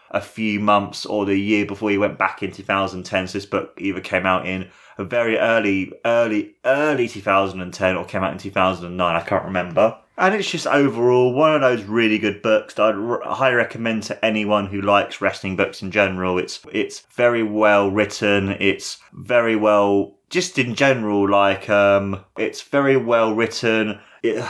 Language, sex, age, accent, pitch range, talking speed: English, male, 20-39, British, 100-120 Hz, 180 wpm